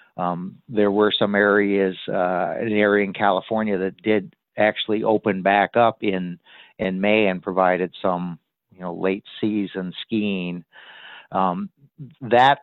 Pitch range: 95-105 Hz